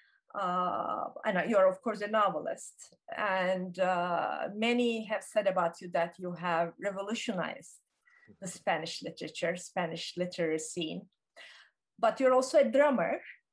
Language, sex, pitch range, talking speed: Turkish, female, 185-255 Hz, 135 wpm